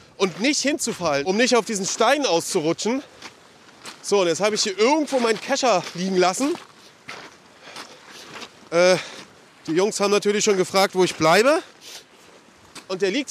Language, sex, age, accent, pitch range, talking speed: German, male, 30-49, German, 195-245 Hz, 150 wpm